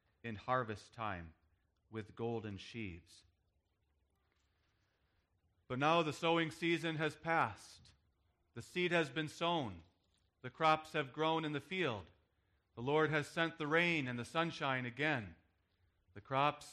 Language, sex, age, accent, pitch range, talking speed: English, male, 40-59, American, 90-150 Hz, 135 wpm